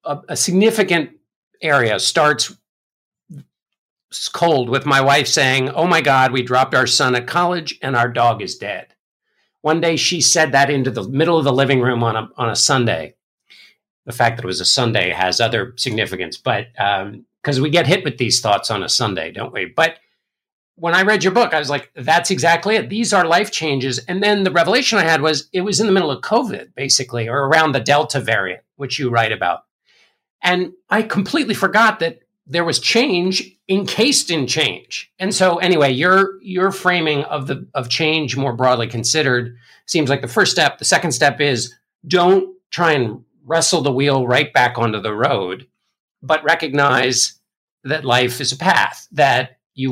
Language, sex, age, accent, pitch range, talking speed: English, male, 50-69, American, 125-180 Hz, 190 wpm